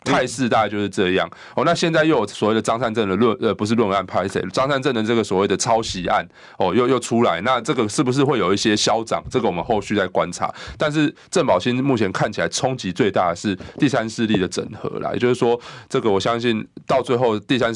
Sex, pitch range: male, 100-125 Hz